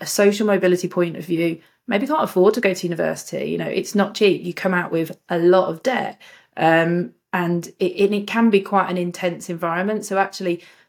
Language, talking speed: English, 210 wpm